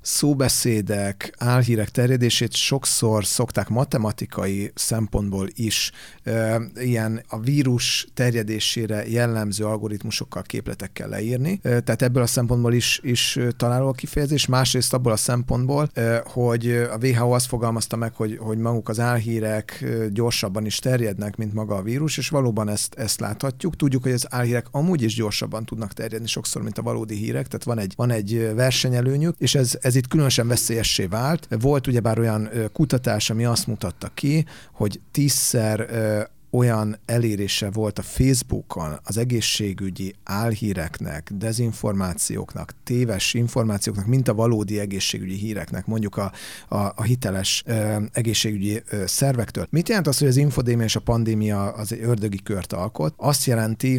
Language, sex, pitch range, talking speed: English, male, 105-125 Hz, 140 wpm